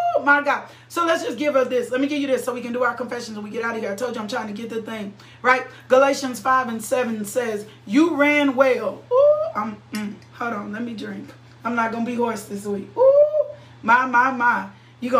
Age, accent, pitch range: 30-49, American, 185-285 Hz